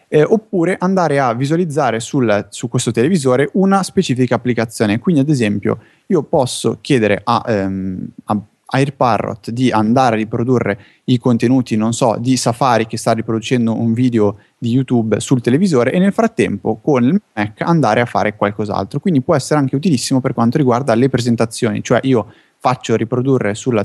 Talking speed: 165 wpm